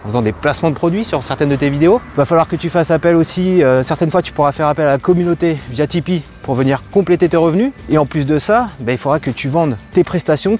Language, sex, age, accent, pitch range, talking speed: French, male, 30-49, French, 130-180 Hz, 275 wpm